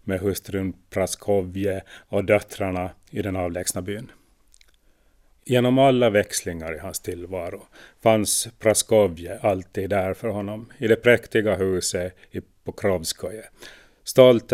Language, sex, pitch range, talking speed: Swedish, male, 95-115 Hz, 115 wpm